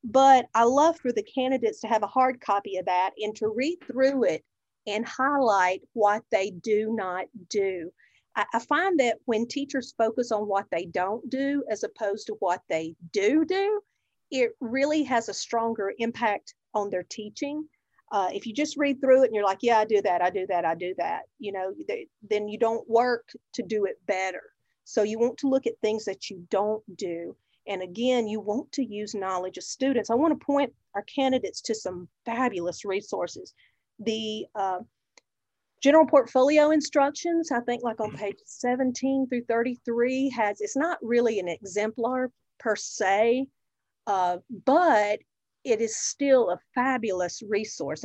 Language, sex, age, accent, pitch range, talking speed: English, female, 40-59, American, 200-260 Hz, 175 wpm